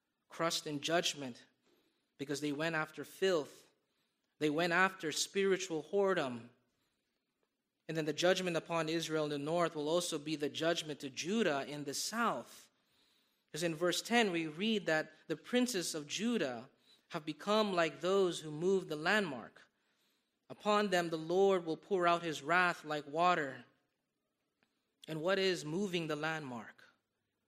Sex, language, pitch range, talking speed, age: male, English, 150-190 Hz, 150 wpm, 20-39